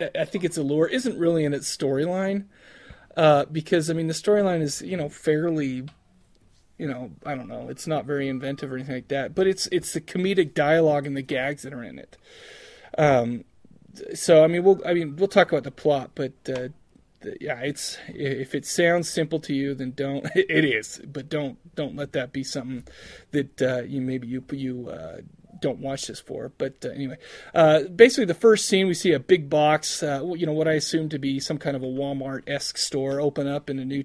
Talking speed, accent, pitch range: 215 wpm, American, 135-165 Hz